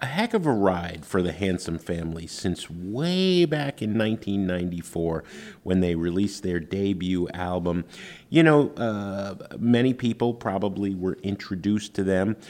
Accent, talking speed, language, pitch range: American, 145 wpm, English, 90-115 Hz